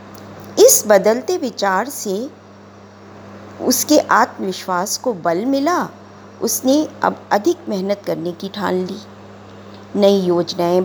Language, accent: Hindi, native